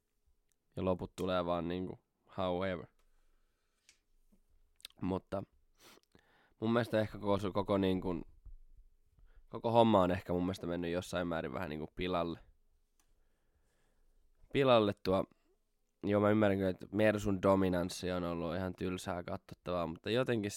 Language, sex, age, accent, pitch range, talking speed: Finnish, male, 20-39, native, 85-100 Hz, 115 wpm